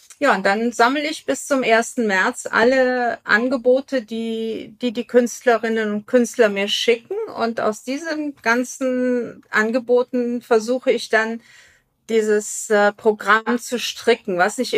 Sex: female